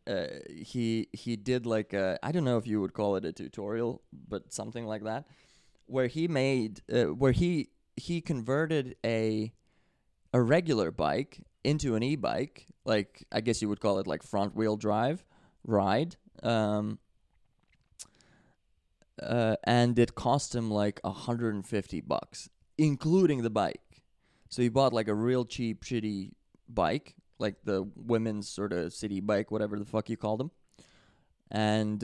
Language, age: English, 20-39